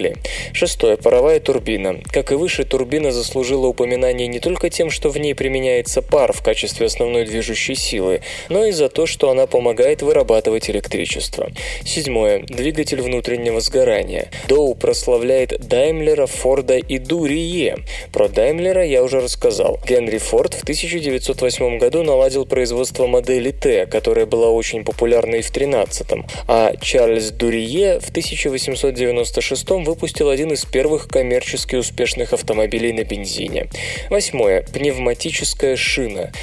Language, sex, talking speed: Russian, male, 130 wpm